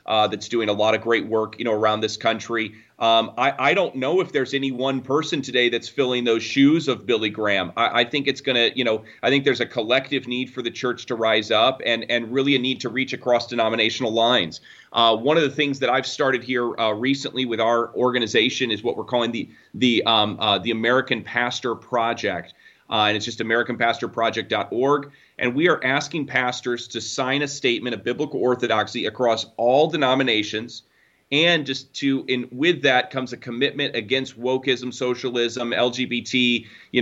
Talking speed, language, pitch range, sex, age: 195 wpm, English, 115-135 Hz, male, 30-49